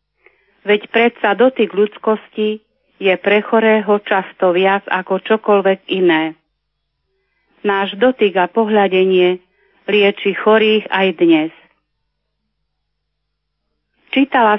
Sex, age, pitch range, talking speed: female, 30-49, 190-225 Hz, 85 wpm